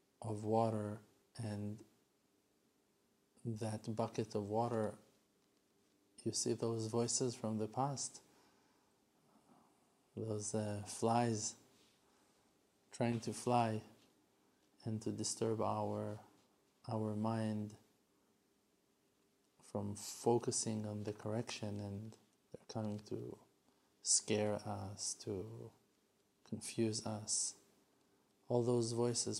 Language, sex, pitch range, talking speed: English, male, 105-115 Hz, 90 wpm